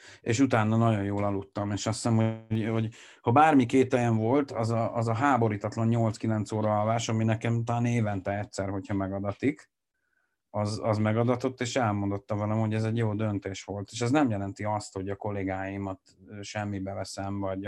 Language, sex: Hungarian, male